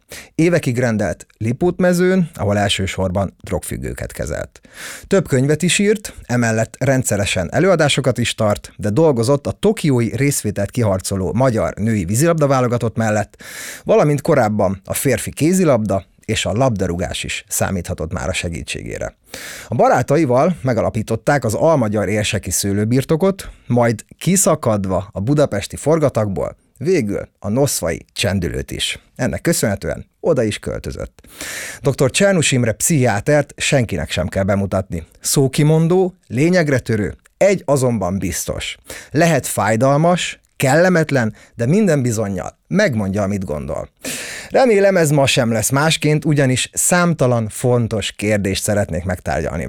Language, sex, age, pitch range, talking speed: Hungarian, male, 30-49, 100-150 Hz, 120 wpm